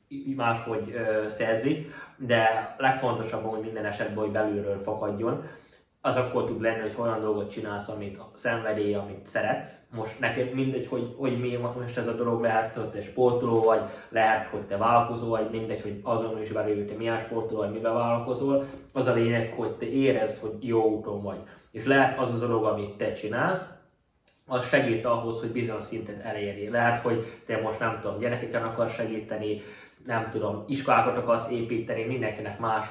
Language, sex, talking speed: Hungarian, male, 170 wpm